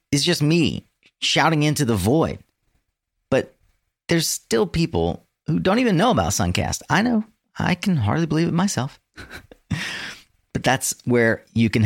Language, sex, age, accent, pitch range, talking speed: English, male, 40-59, American, 95-140 Hz, 150 wpm